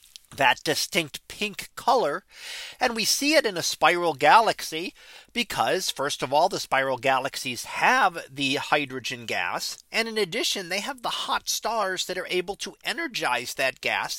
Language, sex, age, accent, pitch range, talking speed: English, male, 40-59, American, 140-220 Hz, 160 wpm